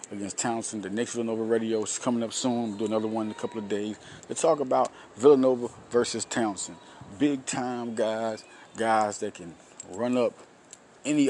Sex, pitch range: male, 110-130 Hz